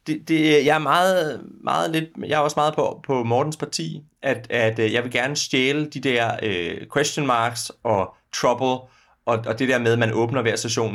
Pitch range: 115-155 Hz